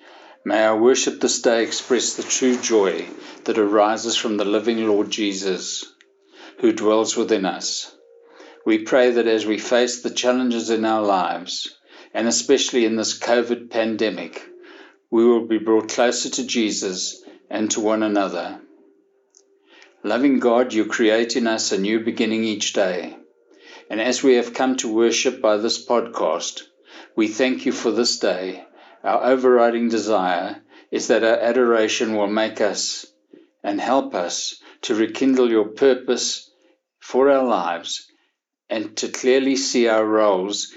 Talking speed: 150 wpm